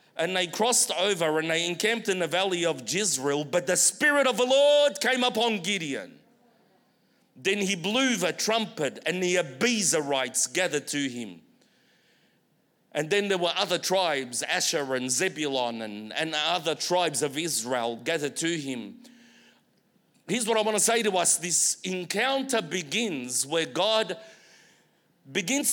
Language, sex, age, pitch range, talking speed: English, male, 40-59, 165-225 Hz, 150 wpm